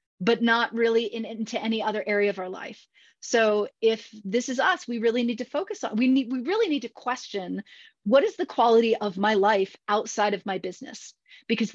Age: 30-49